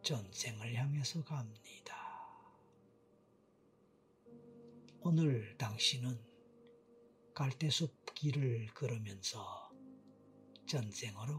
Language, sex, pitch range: Korean, male, 105-150 Hz